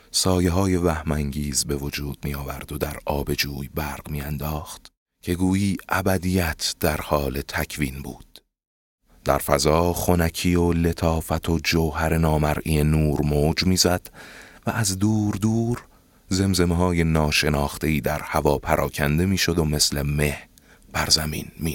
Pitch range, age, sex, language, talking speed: 75-95 Hz, 30-49, male, Persian, 135 wpm